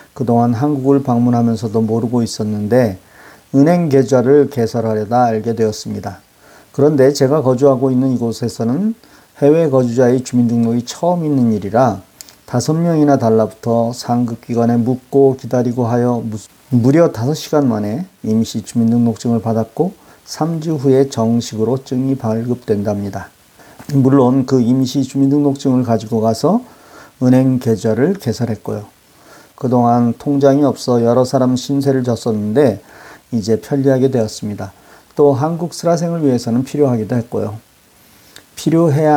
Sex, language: male, Korean